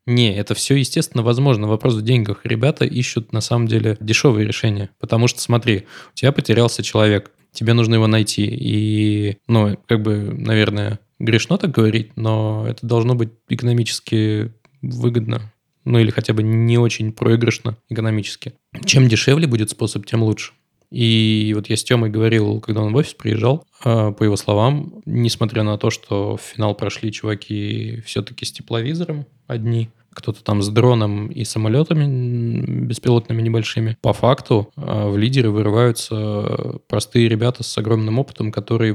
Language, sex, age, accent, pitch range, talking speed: Russian, male, 20-39, native, 110-120 Hz, 155 wpm